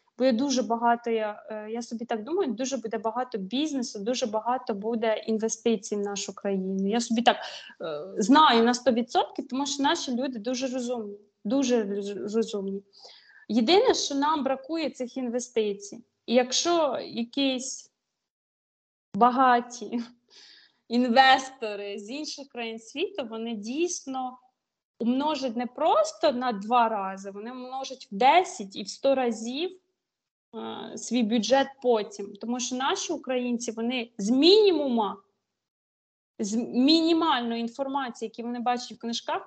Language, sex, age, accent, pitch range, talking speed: Ukrainian, female, 20-39, native, 225-270 Hz, 130 wpm